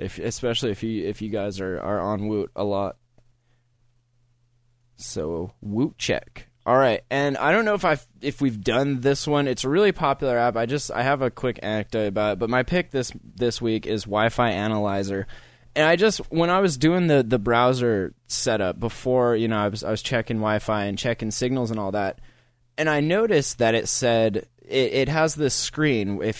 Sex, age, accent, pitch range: male, 20-39, American, 110-135 Hz